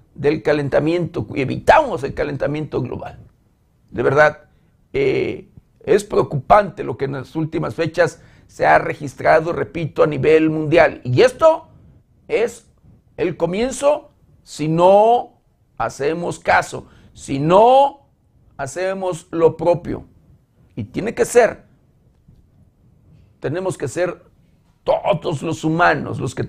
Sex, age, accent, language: male, 50-69, Mexican, Spanish